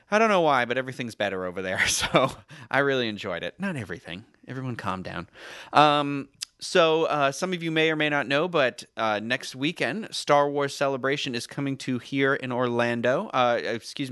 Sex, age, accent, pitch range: male, 30-49, American, 110-145 Hz